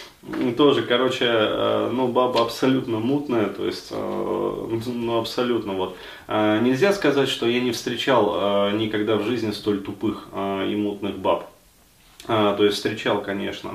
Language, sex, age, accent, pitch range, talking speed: Russian, male, 20-39, native, 105-155 Hz, 125 wpm